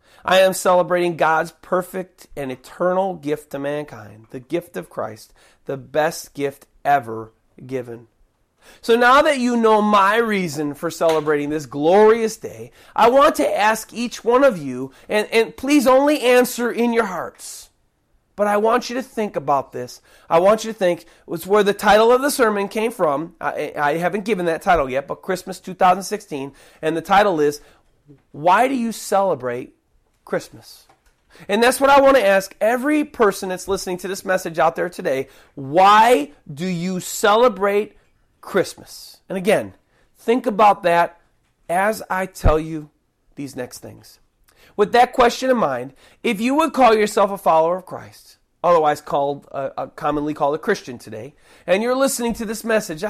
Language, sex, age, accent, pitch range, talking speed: English, male, 40-59, American, 150-220 Hz, 170 wpm